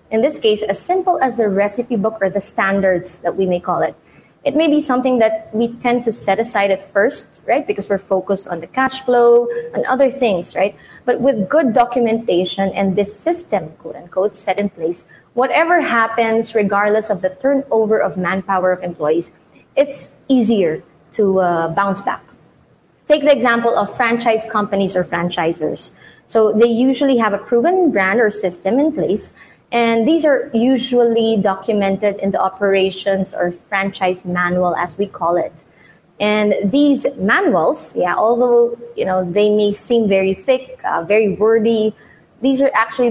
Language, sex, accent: English, female, Filipino